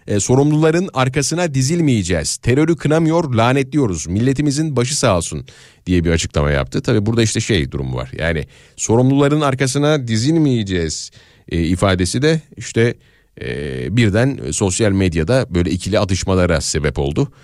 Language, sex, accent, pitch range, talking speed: Turkish, male, native, 100-140 Hz, 130 wpm